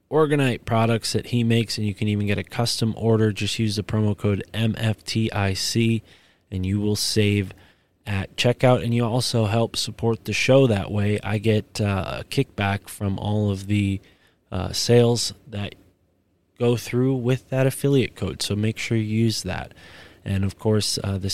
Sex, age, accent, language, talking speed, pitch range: male, 20-39, American, English, 175 wpm, 100-120 Hz